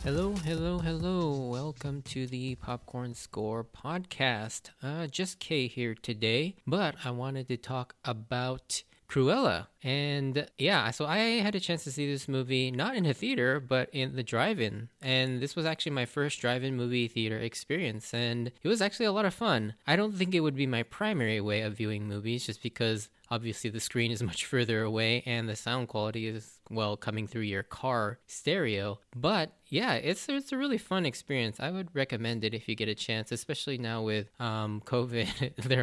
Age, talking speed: 20-39, 190 wpm